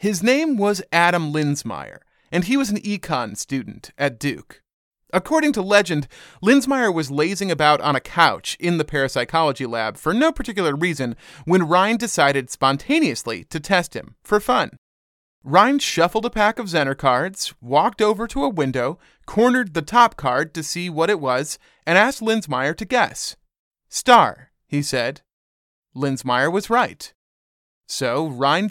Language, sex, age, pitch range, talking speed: English, male, 30-49, 135-210 Hz, 155 wpm